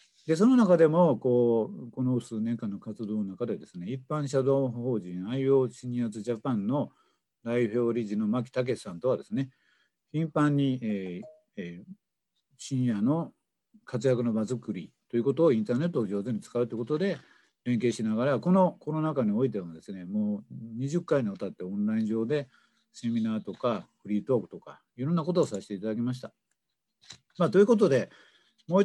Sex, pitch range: male, 110-160 Hz